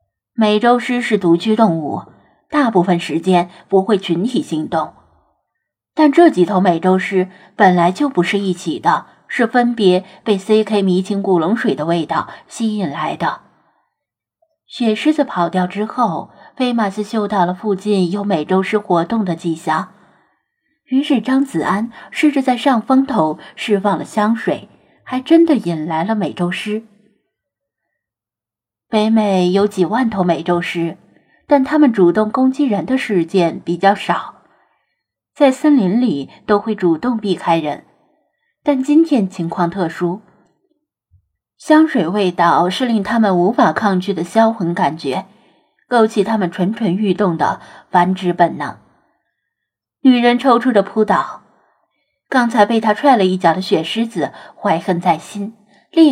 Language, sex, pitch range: Chinese, female, 180-240 Hz